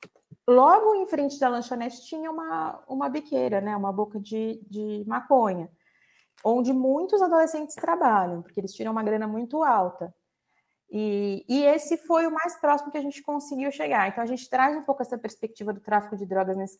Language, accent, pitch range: Portuguese, Brazilian, 195-255 Hz